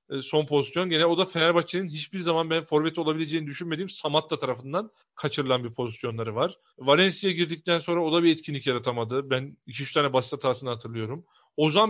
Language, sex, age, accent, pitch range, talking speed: Turkish, male, 40-59, native, 155-205 Hz, 165 wpm